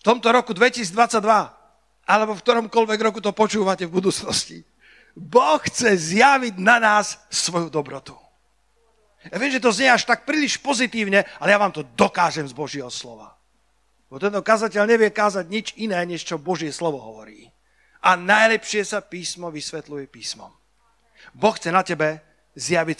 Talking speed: 155 wpm